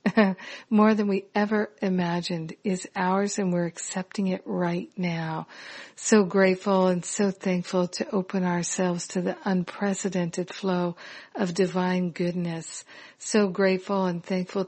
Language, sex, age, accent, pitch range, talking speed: English, female, 50-69, American, 180-200 Hz, 130 wpm